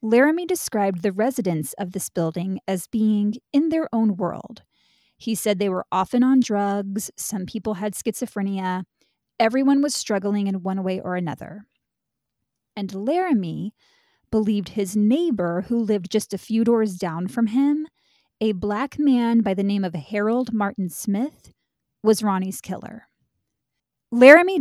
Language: English